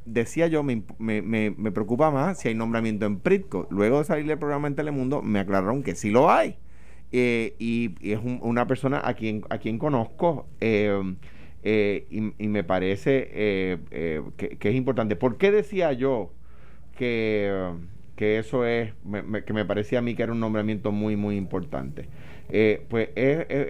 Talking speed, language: 190 wpm, Spanish